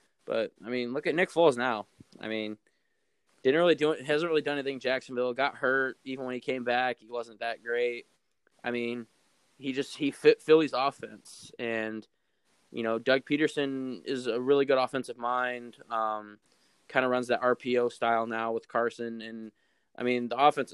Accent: American